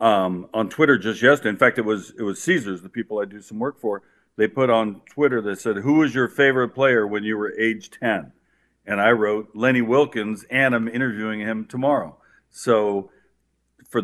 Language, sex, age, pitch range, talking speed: English, male, 50-69, 110-125 Hz, 200 wpm